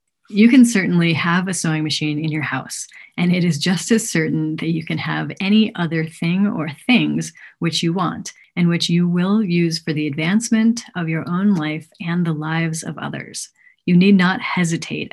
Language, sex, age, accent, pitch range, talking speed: English, female, 30-49, American, 160-195 Hz, 195 wpm